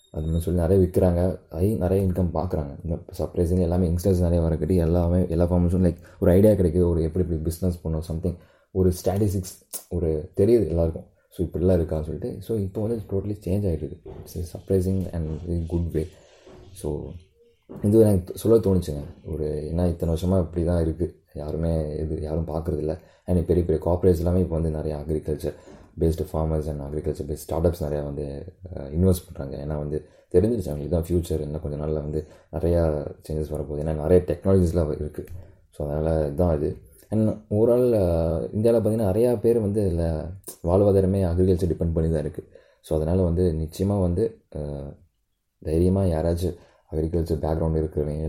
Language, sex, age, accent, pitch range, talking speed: Tamil, male, 20-39, native, 80-95 Hz, 160 wpm